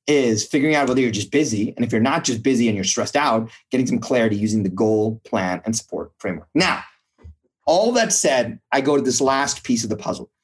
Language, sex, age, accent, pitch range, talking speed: English, male, 30-49, American, 110-145 Hz, 230 wpm